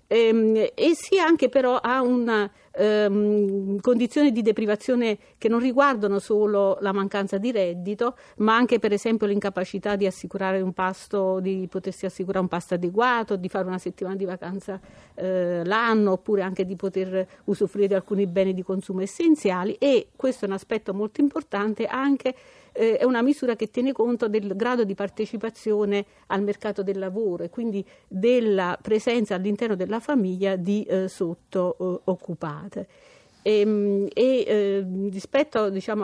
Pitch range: 190-225 Hz